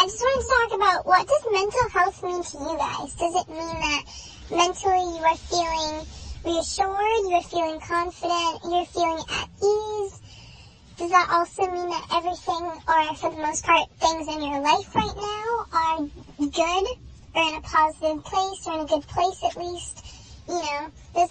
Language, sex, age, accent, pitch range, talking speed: English, male, 10-29, American, 320-370 Hz, 185 wpm